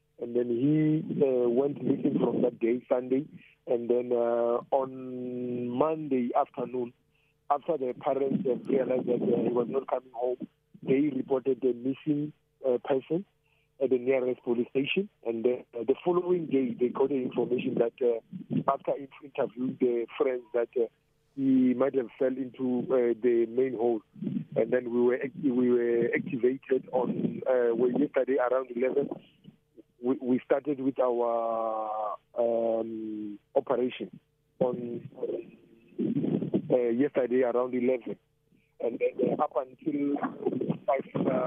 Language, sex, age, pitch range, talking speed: English, male, 50-69, 120-145 Hz, 140 wpm